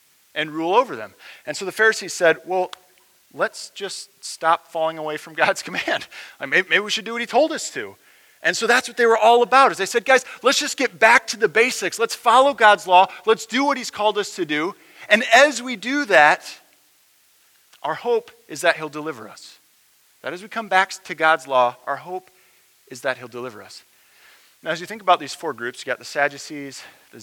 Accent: American